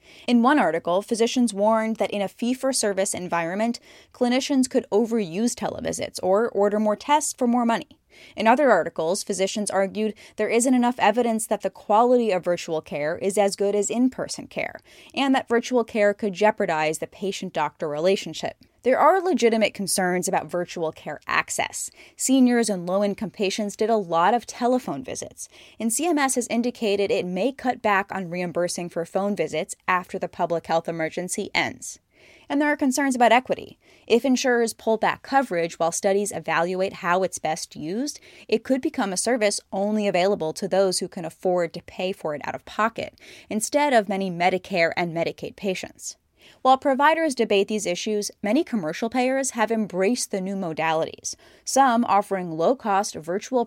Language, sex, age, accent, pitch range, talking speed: English, female, 10-29, American, 185-240 Hz, 165 wpm